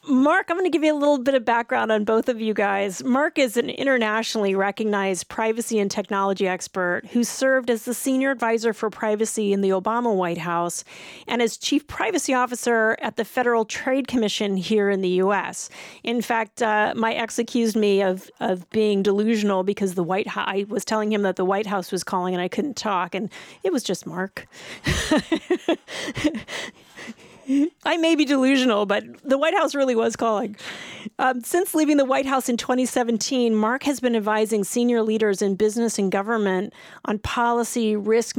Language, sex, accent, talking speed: English, female, American, 185 wpm